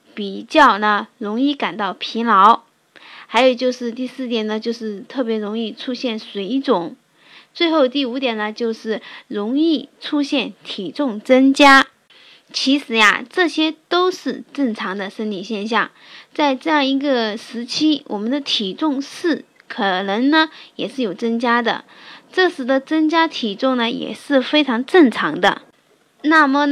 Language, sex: Chinese, female